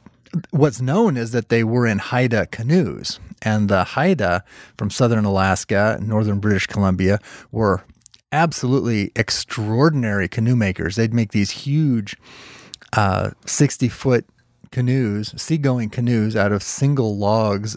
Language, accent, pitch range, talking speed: English, American, 110-130 Hz, 125 wpm